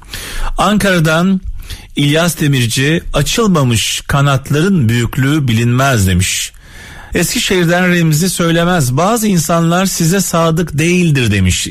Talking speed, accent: 85 wpm, native